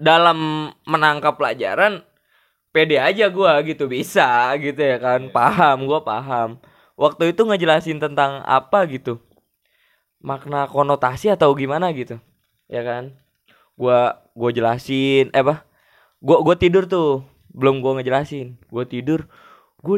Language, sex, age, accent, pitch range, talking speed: Indonesian, male, 20-39, native, 140-215 Hz, 125 wpm